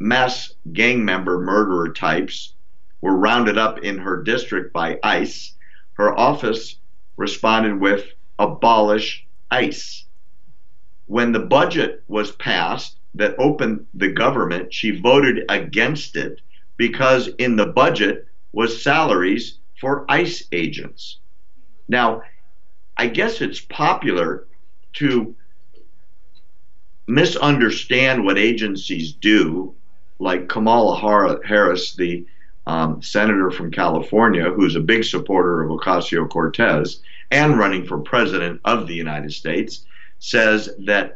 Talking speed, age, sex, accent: 110 wpm, 50-69, male, American